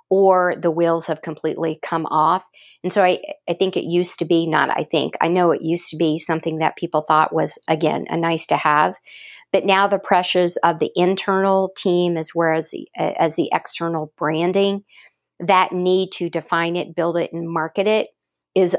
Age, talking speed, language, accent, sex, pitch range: 50-69, 200 wpm, English, American, female, 165-185 Hz